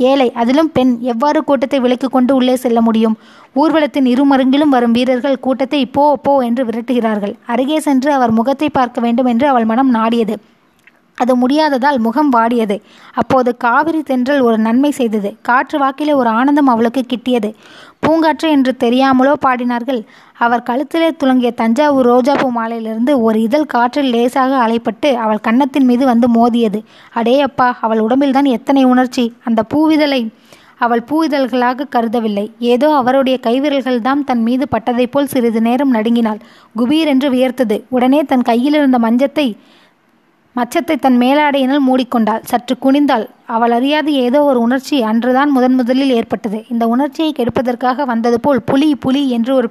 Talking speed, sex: 140 wpm, female